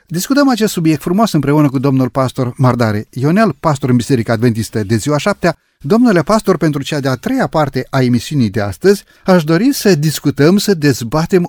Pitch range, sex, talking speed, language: 130-180 Hz, male, 185 wpm, Romanian